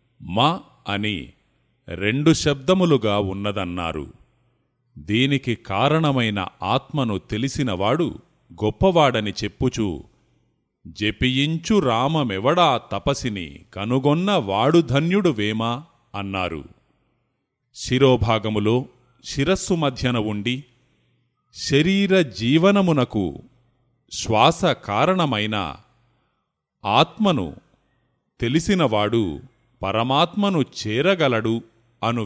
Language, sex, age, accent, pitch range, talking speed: Telugu, male, 30-49, native, 105-145 Hz, 50 wpm